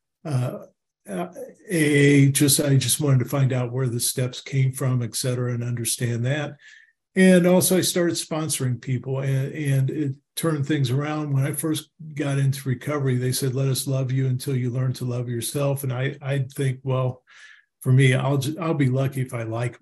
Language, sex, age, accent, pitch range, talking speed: English, male, 50-69, American, 125-155 Hz, 190 wpm